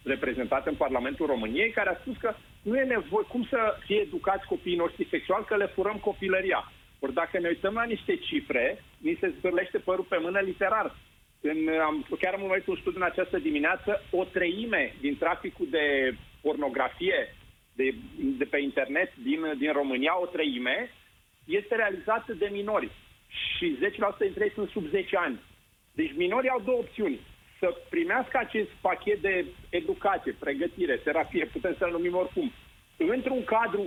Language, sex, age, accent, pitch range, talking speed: Romanian, male, 40-59, native, 175-265 Hz, 165 wpm